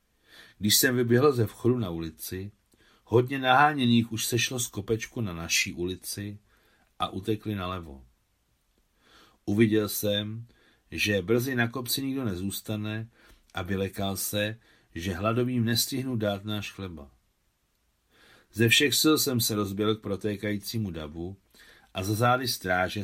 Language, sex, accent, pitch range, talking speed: Czech, male, native, 95-125 Hz, 130 wpm